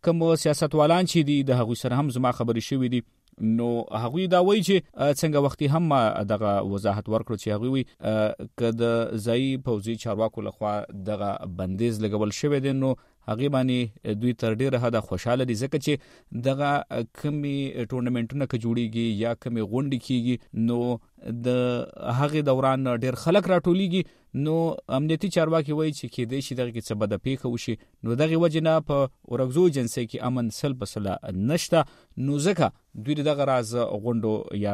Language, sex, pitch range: Urdu, male, 110-150 Hz